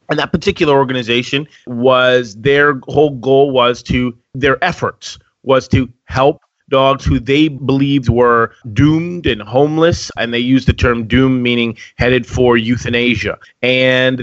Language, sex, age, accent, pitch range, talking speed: English, male, 30-49, American, 120-140 Hz, 145 wpm